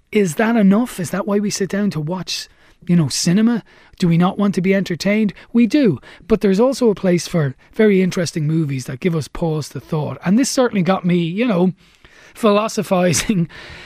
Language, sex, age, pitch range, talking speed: English, male, 30-49, 145-200 Hz, 200 wpm